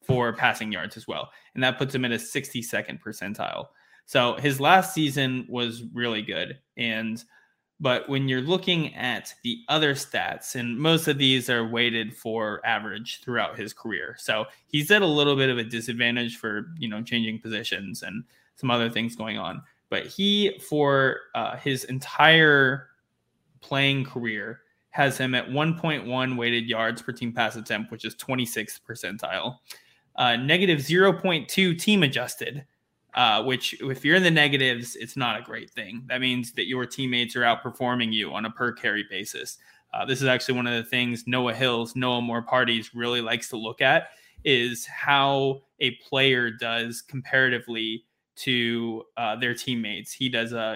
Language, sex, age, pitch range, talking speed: English, male, 20-39, 115-140 Hz, 170 wpm